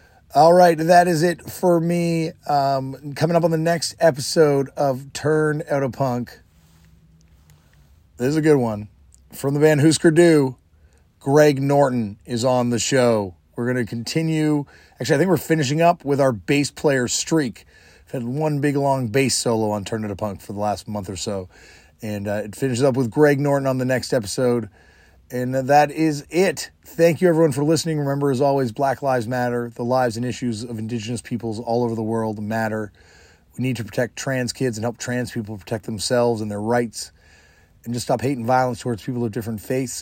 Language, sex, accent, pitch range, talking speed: English, male, American, 105-140 Hz, 195 wpm